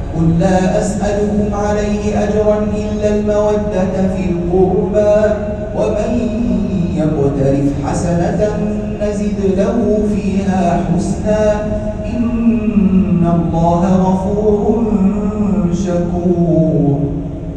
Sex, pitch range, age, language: male, 155-210 Hz, 30-49, Arabic